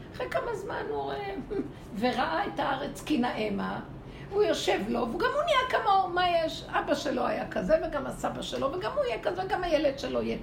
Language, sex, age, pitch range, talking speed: Hebrew, female, 60-79, 235-340 Hz, 195 wpm